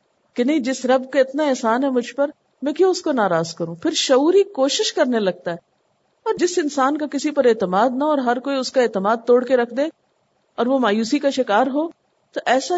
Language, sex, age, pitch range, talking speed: Urdu, female, 50-69, 210-290 Hz, 220 wpm